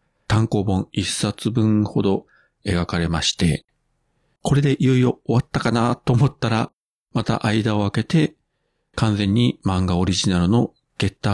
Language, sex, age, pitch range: Japanese, male, 40-59, 90-125 Hz